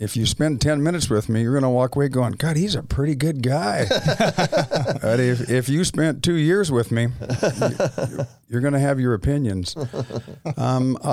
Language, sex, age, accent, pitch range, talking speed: English, male, 50-69, American, 110-130 Hz, 190 wpm